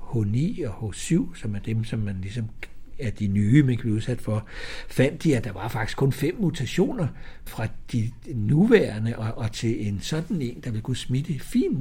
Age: 60-79